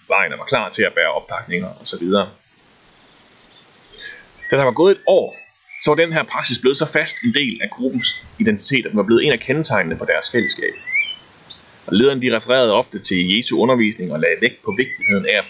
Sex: male